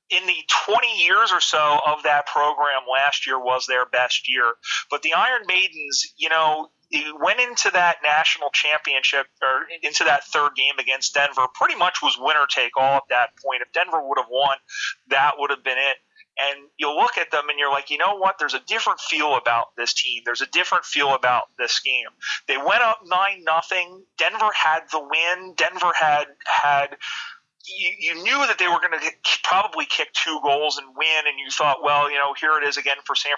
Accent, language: American, English